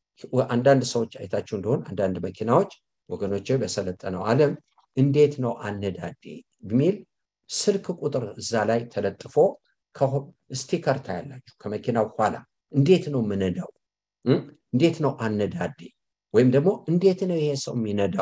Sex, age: male, 60-79